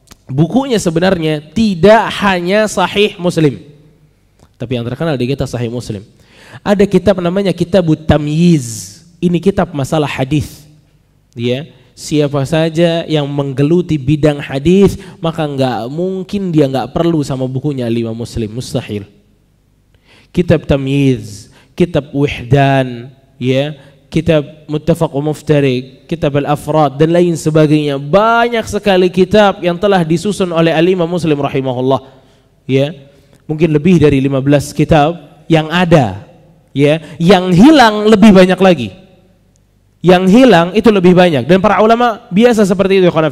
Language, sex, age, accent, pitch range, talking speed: Indonesian, male, 20-39, native, 140-190 Hz, 125 wpm